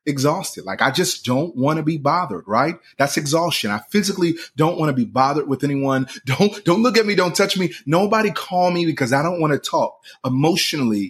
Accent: American